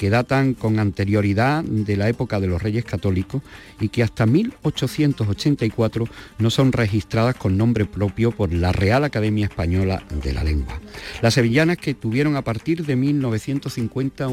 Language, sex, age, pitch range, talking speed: Spanish, male, 50-69, 100-130 Hz, 155 wpm